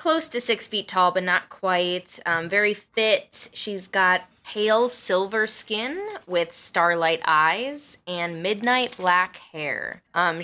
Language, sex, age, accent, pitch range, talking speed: English, female, 10-29, American, 170-220 Hz, 140 wpm